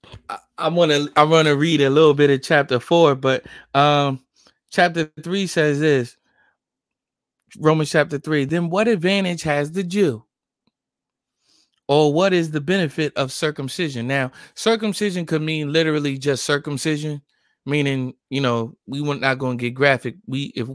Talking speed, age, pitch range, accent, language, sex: 155 wpm, 20-39, 125-155 Hz, American, English, male